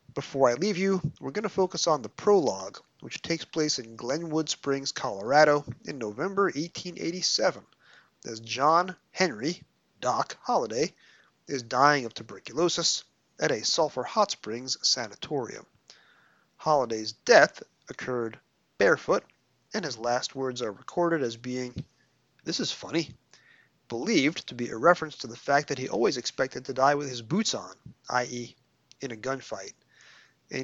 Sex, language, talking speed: male, English, 145 wpm